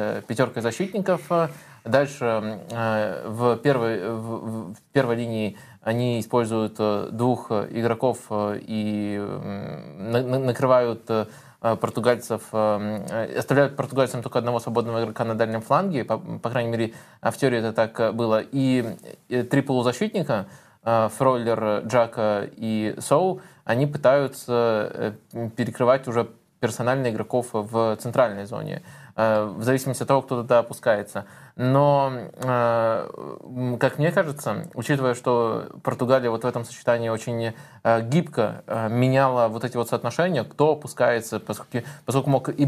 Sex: male